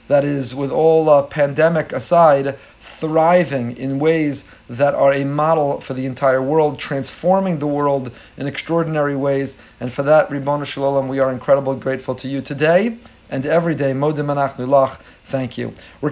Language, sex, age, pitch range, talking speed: English, male, 40-59, 140-185 Hz, 160 wpm